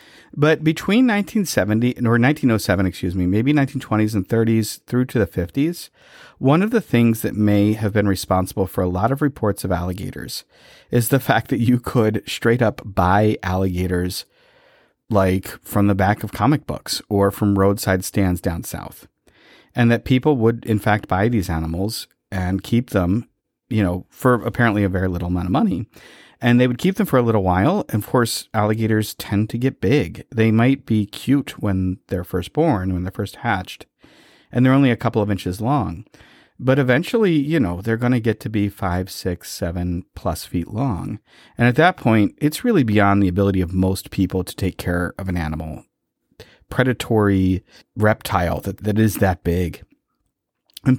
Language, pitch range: English, 95-125 Hz